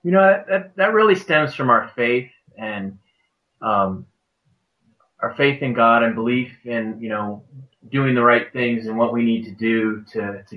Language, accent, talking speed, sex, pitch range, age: English, American, 180 wpm, male, 105-125 Hz, 30-49